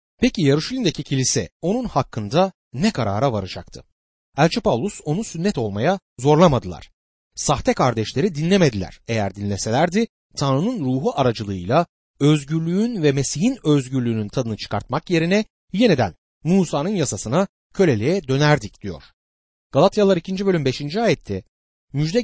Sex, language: male, Turkish